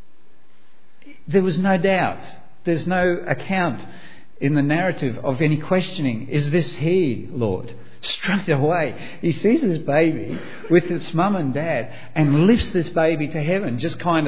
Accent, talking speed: Australian, 150 wpm